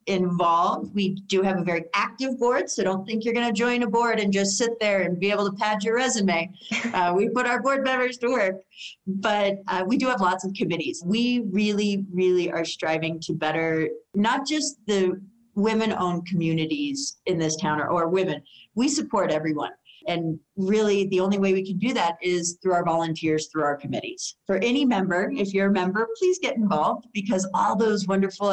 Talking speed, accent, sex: 200 wpm, American, female